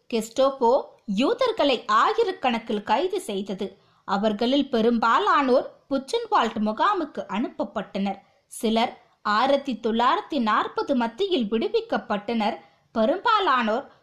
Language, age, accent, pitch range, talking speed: Tamil, 20-39, native, 220-305 Hz, 65 wpm